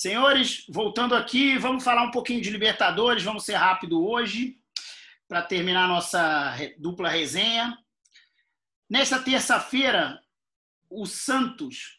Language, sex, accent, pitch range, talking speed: Portuguese, male, Brazilian, 170-245 Hz, 110 wpm